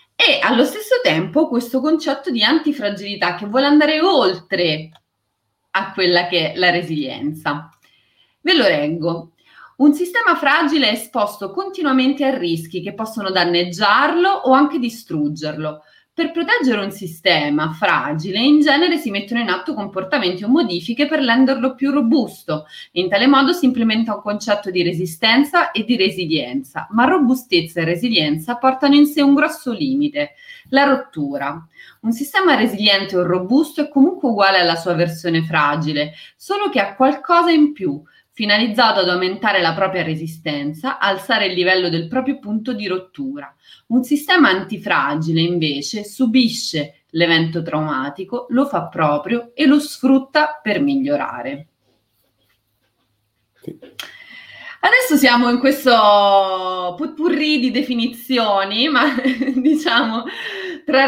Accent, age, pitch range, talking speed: native, 30-49, 175-280 Hz, 130 wpm